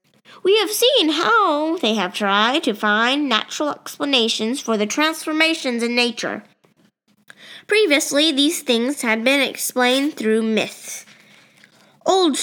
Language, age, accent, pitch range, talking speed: English, 20-39, American, 220-300 Hz, 120 wpm